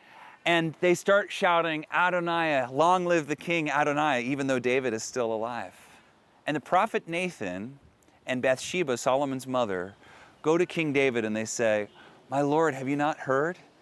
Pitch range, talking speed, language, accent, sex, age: 130-175 Hz, 160 wpm, Dutch, American, male, 40-59